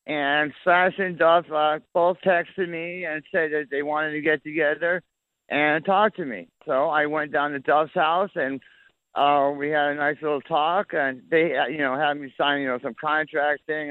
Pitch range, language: 145-180 Hz, English